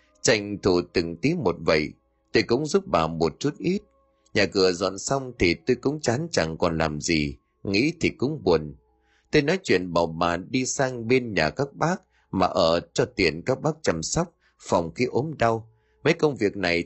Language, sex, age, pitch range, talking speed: Vietnamese, male, 30-49, 85-130 Hz, 200 wpm